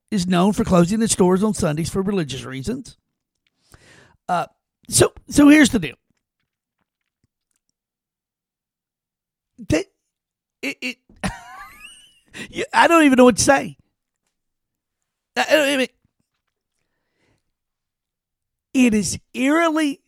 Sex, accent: male, American